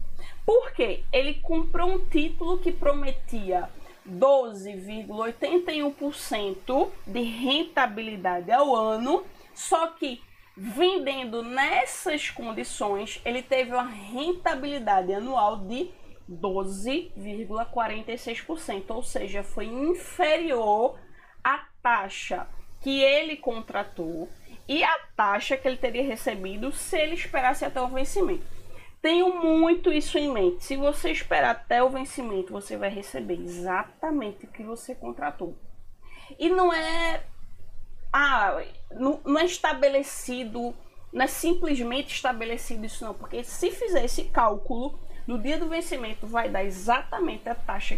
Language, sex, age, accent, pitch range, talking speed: Portuguese, female, 20-39, Brazilian, 220-325 Hz, 115 wpm